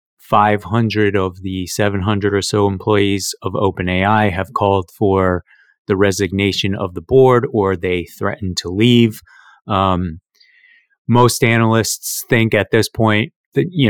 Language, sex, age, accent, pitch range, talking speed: English, male, 30-49, American, 95-115 Hz, 140 wpm